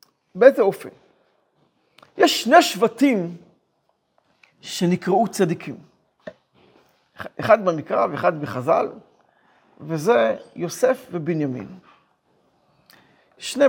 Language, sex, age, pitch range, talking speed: Hebrew, male, 50-69, 195-260 Hz, 65 wpm